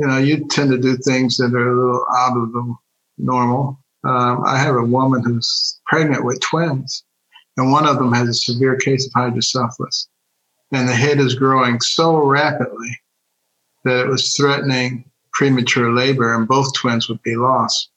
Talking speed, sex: 175 wpm, male